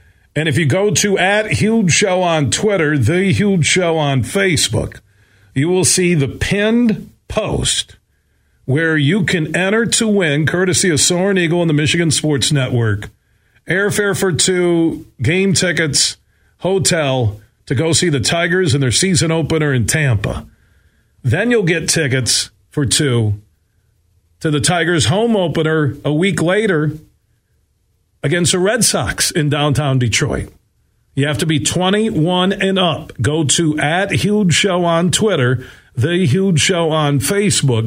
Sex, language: male, English